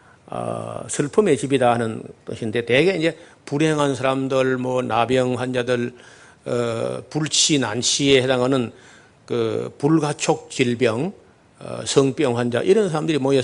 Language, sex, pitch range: Korean, male, 125-175 Hz